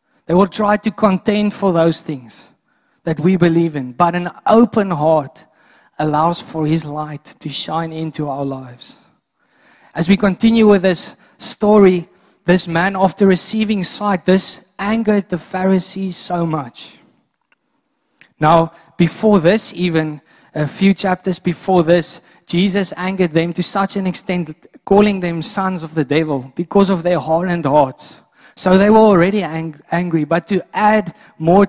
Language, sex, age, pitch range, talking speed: English, male, 20-39, 165-200 Hz, 150 wpm